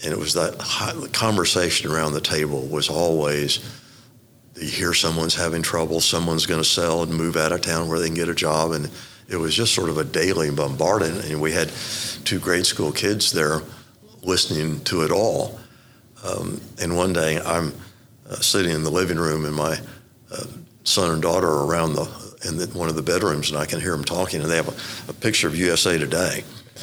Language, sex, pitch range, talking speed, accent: English, male, 80-115 Hz, 205 wpm, American